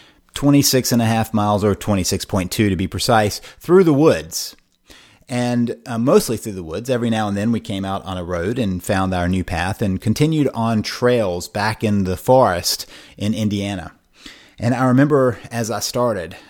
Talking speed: 165 wpm